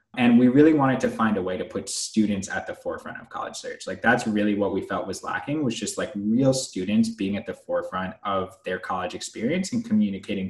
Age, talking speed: 20-39, 230 wpm